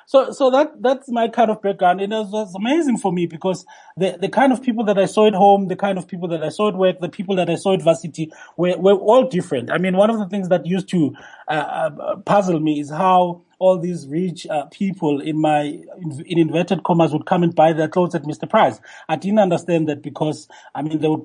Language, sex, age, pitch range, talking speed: English, male, 30-49, 155-185 Hz, 250 wpm